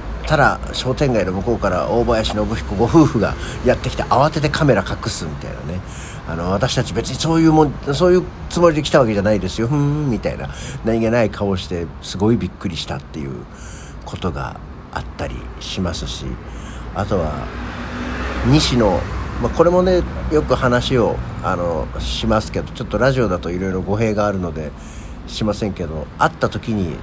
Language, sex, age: Japanese, male, 50-69